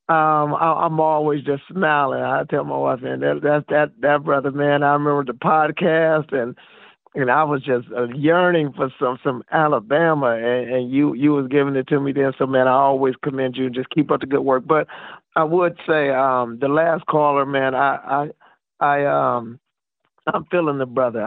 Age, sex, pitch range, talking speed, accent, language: 50-69, male, 130-150 Hz, 200 wpm, American, English